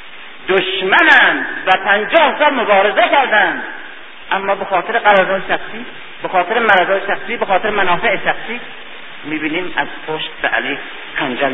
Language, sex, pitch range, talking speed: Persian, male, 150-205 Hz, 125 wpm